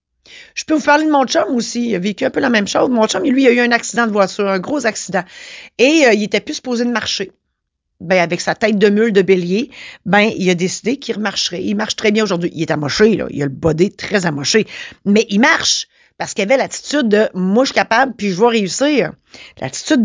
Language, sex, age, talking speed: French, female, 40-59, 250 wpm